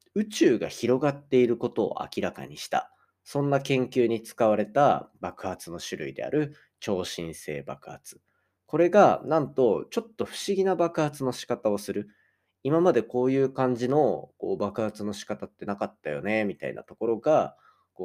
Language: Japanese